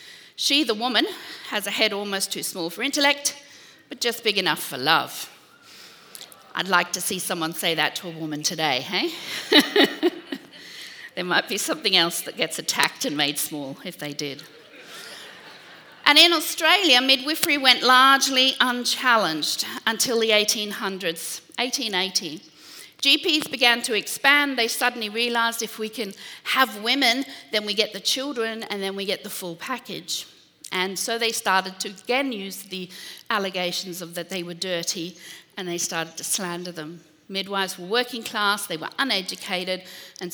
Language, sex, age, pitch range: English, female, 50-69, 175-245 Hz